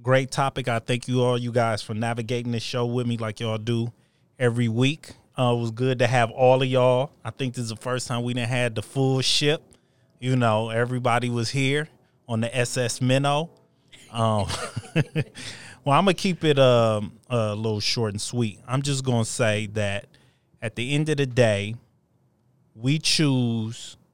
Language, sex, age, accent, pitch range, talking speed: English, male, 20-39, American, 110-130 Hz, 190 wpm